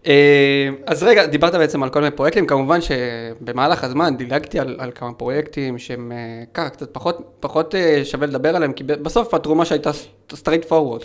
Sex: male